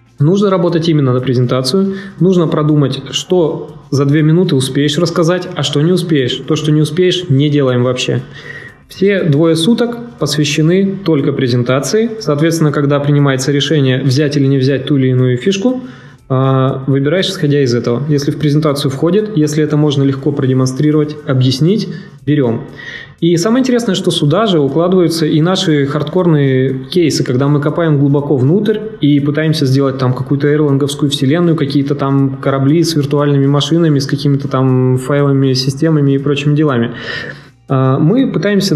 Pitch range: 135-165 Hz